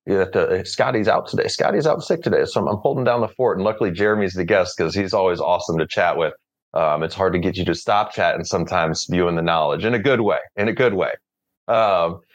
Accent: American